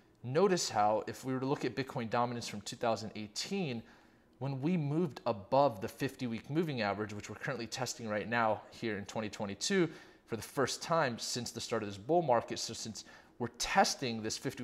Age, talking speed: 30-49, 195 wpm